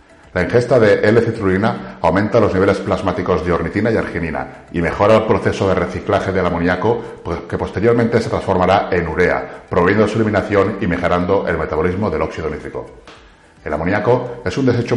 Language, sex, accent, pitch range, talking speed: Spanish, male, Spanish, 90-110 Hz, 170 wpm